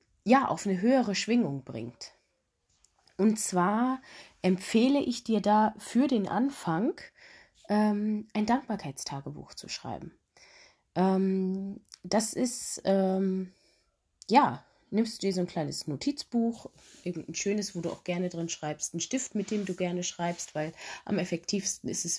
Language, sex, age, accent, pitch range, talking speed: German, female, 20-39, German, 170-225 Hz, 140 wpm